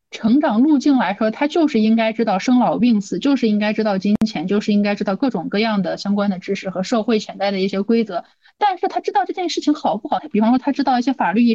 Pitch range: 210-270 Hz